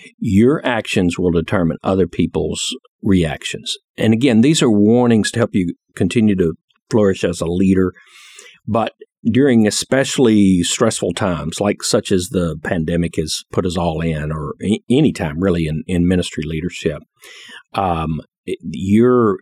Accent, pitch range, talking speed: American, 85-115 Hz, 140 wpm